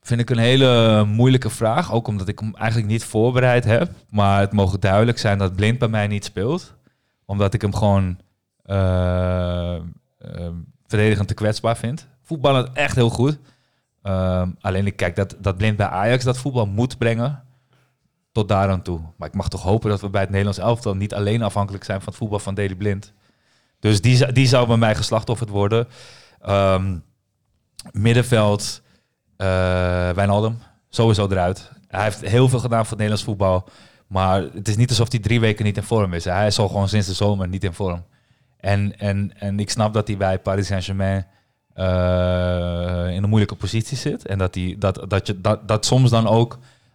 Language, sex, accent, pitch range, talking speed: Dutch, male, Dutch, 95-115 Hz, 195 wpm